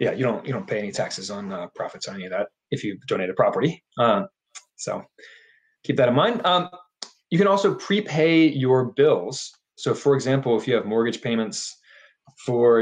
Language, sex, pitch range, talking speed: English, male, 115-150 Hz, 195 wpm